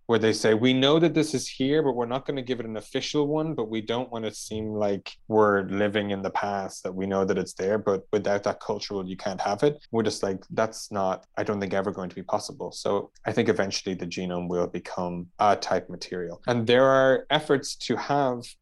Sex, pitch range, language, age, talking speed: male, 100-125 Hz, English, 20-39, 235 wpm